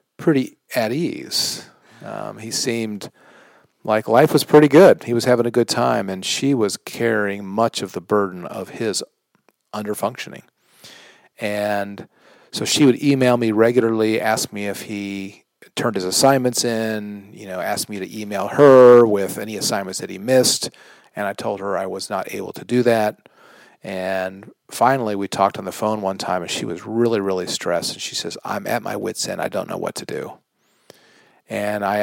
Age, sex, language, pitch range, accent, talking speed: 40-59, male, English, 100-120 Hz, American, 185 wpm